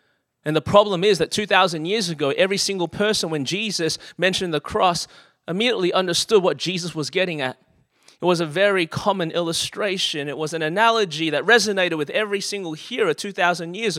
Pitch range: 160-195 Hz